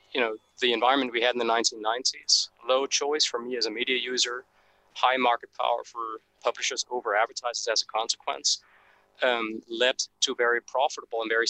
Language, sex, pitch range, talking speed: English, male, 120-145 Hz, 175 wpm